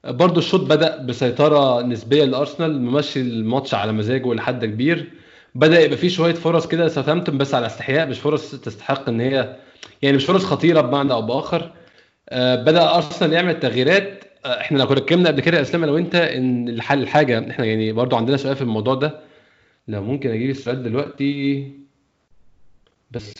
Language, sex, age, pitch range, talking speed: Arabic, male, 20-39, 120-160 Hz, 170 wpm